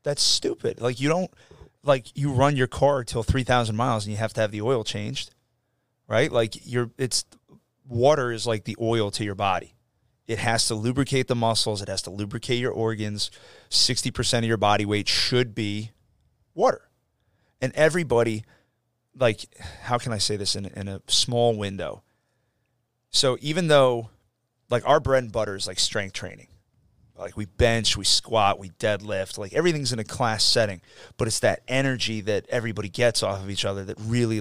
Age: 30-49